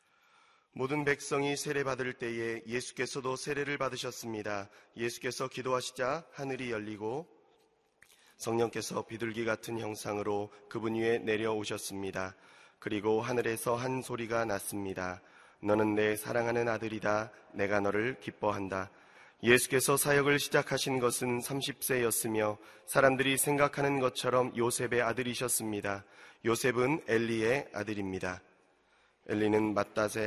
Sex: male